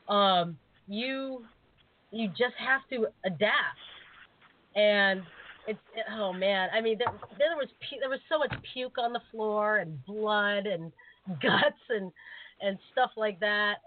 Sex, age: female, 30-49